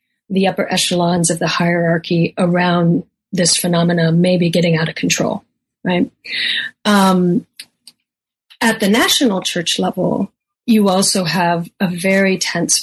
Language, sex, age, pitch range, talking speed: English, female, 30-49, 180-220 Hz, 130 wpm